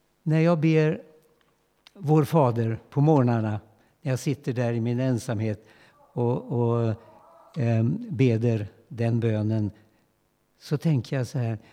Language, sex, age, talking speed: Swedish, male, 60-79, 130 wpm